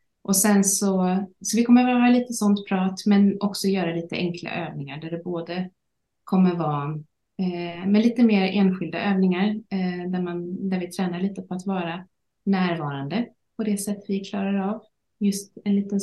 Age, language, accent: 30-49, Swedish, native